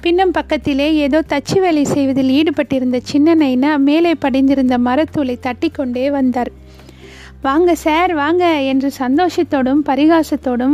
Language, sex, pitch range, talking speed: Tamil, female, 265-305 Hz, 110 wpm